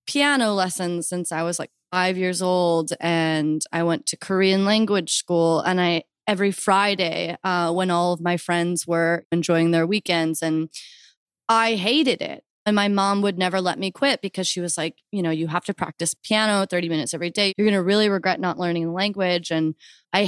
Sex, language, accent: female, English, American